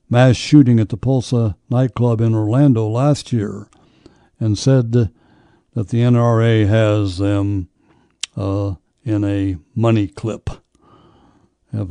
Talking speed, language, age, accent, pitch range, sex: 115 wpm, English, 60-79, American, 110-140 Hz, male